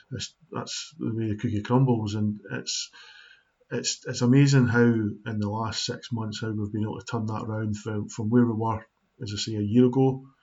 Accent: British